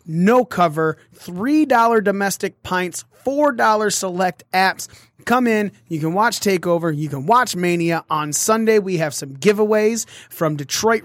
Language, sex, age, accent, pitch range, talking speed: English, male, 30-49, American, 155-210 Hz, 140 wpm